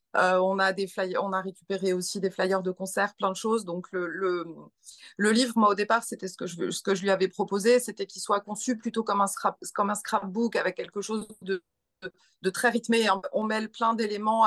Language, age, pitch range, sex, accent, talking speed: French, 30-49, 180-225 Hz, female, French, 235 wpm